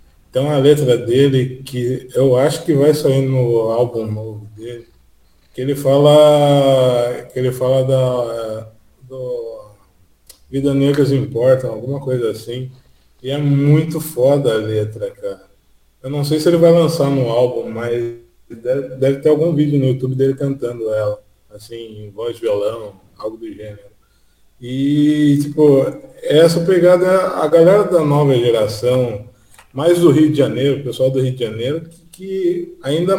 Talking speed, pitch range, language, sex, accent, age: 155 wpm, 120-155 Hz, Portuguese, male, Brazilian, 20-39